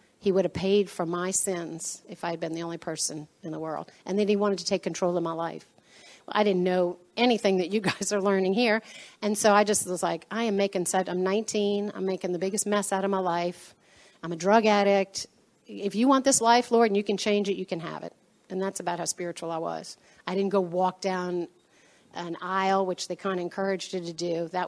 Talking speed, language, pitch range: 245 wpm, English, 180-205 Hz